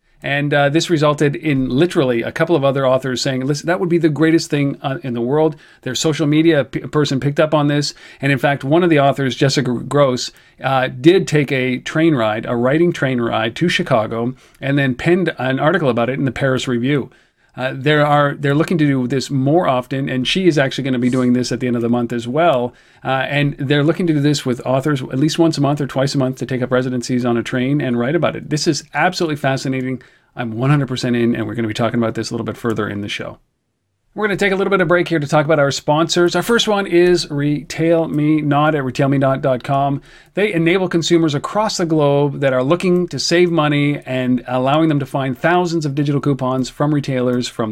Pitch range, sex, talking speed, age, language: 130-165 Hz, male, 235 wpm, 40-59, English